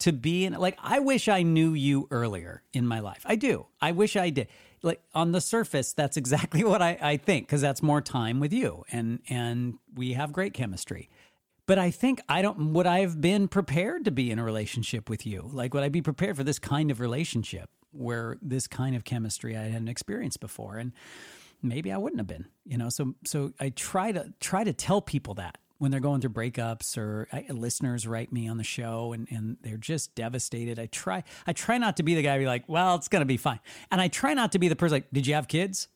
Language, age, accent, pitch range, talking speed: English, 40-59, American, 120-175 Hz, 235 wpm